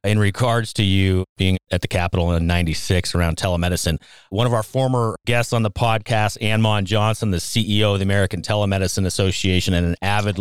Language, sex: English, male